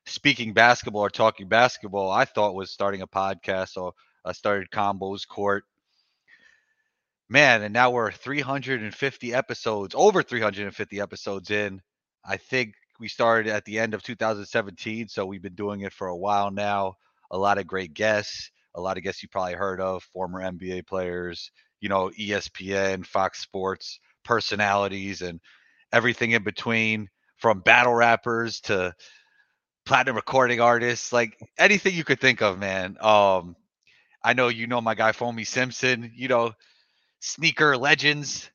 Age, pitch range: 30-49, 100-125 Hz